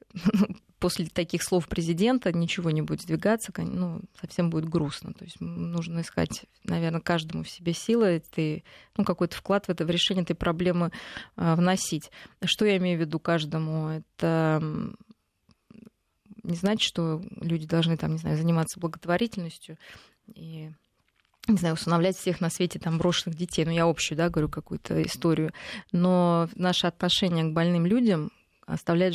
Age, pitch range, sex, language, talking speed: 20-39, 160-190 Hz, female, Russian, 155 wpm